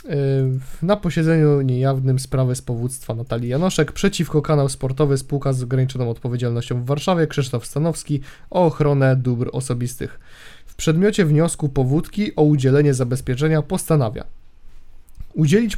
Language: Polish